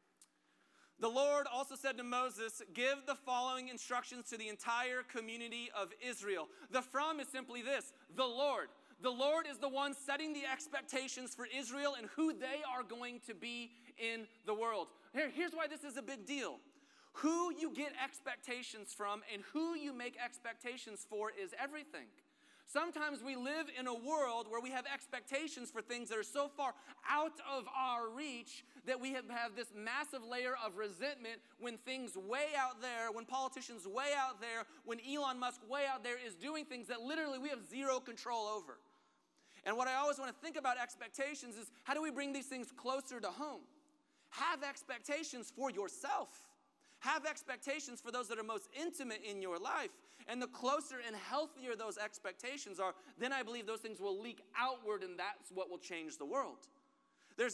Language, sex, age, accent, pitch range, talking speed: English, male, 30-49, American, 225-275 Hz, 180 wpm